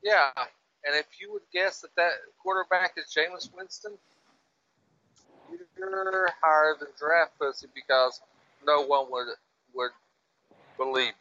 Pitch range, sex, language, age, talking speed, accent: 120-160 Hz, male, English, 50-69, 125 wpm, American